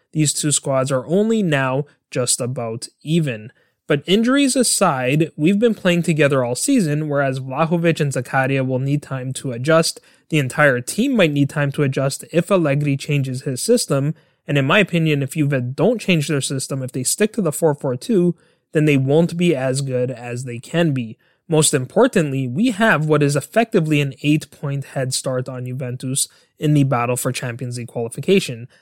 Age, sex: 20-39, male